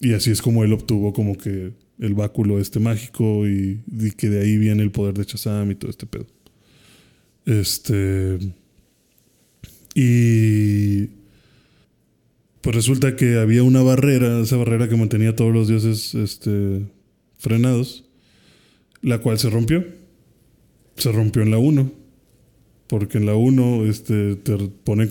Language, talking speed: Spanish, 145 wpm